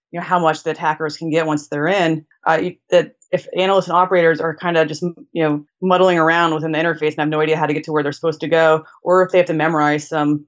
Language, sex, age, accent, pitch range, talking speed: English, female, 20-39, American, 150-170 Hz, 275 wpm